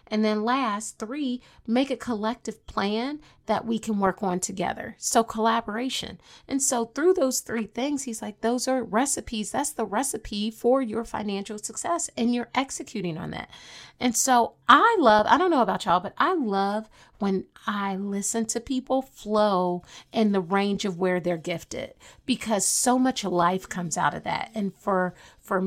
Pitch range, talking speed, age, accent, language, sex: 195-255 Hz, 175 wpm, 30-49, American, English, female